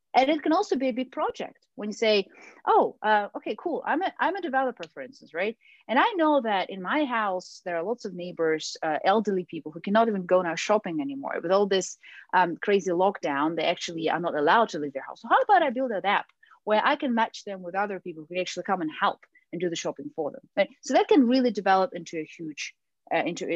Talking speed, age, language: 250 wpm, 30-49, English